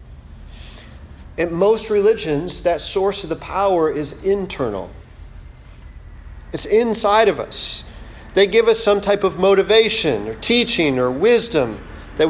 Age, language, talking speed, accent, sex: 40-59, English, 125 wpm, American, male